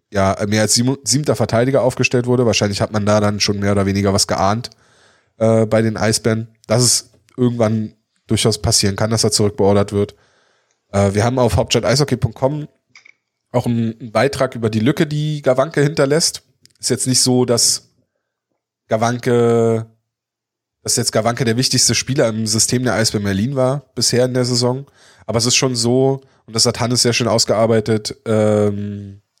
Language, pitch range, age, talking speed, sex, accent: German, 105-125 Hz, 20-39, 165 wpm, male, German